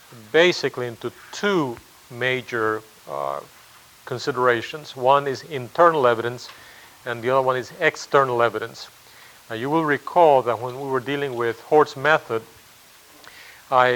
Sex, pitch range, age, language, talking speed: male, 120-140 Hz, 40-59, English, 130 wpm